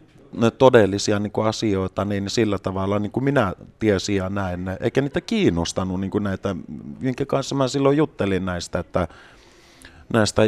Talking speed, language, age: 135 wpm, Finnish, 30-49